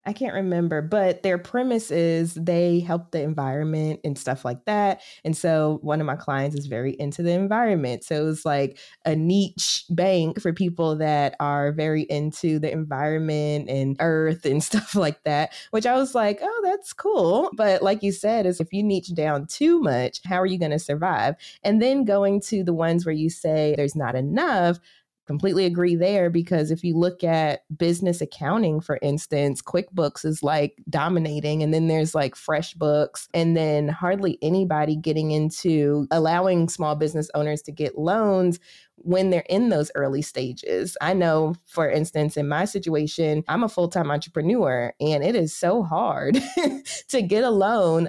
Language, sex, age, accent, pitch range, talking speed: English, female, 20-39, American, 150-185 Hz, 180 wpm